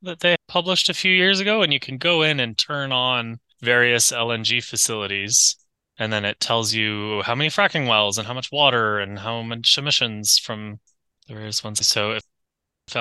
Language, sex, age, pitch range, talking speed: English, male, 20-39, 105-130 Hz, 195 wpm